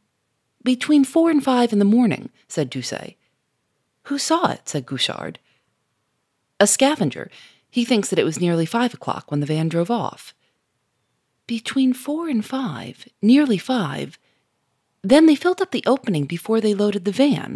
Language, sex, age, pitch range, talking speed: English, female, 40-59, 145-245 Hz, 155 wpm